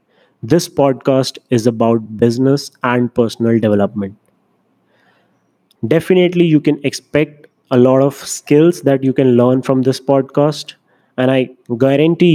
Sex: male